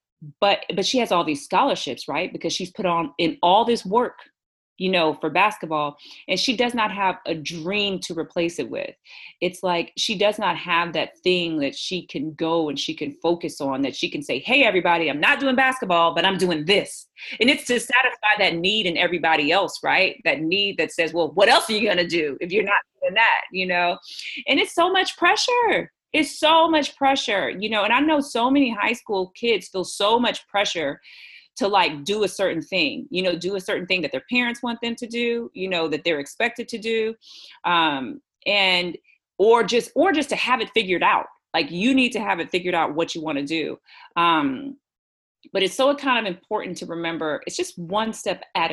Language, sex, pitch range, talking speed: English, female, 170-250 Hz, 220 wpm